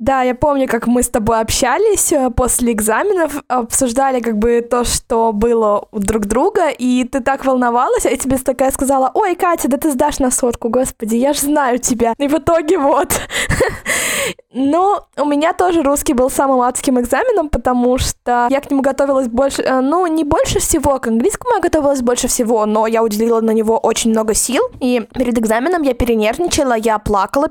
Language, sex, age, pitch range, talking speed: Russian, female, 20-39, 235-290 Hz, 185 wpm